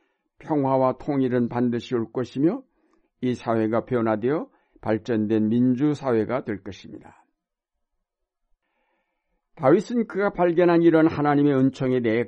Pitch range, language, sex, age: 115-145 Hz, Korean, male, 60-79